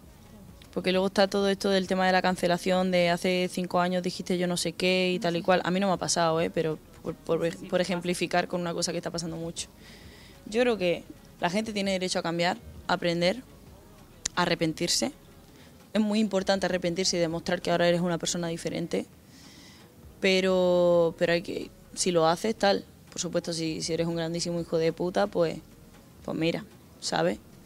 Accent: Spanish